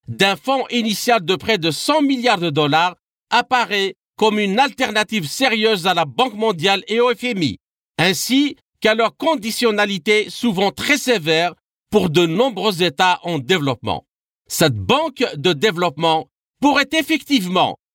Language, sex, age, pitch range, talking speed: French, male, 50-69, 180-255 Hz, 135 wpm